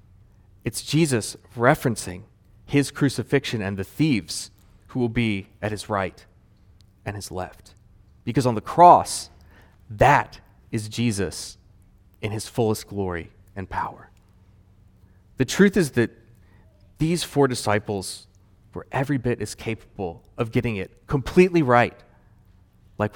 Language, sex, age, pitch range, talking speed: English, male, 30-49, 95-125 Hz, 125 wpm